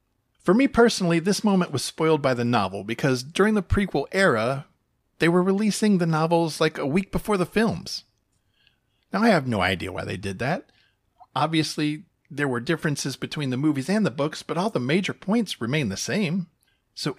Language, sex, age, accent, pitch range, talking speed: English, male, 40-59, American, 125-185 Hz, 190 wpm